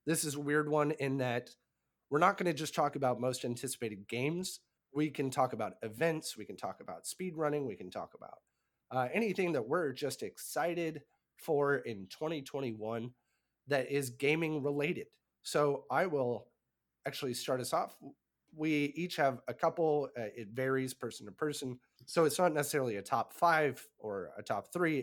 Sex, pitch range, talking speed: male, 110-150 Hz, 175 wpm